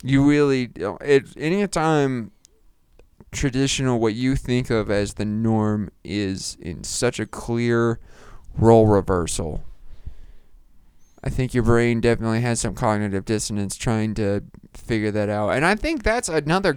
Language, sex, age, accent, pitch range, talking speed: English, male, 20-39, American, 105-130 Hz, 135 wpm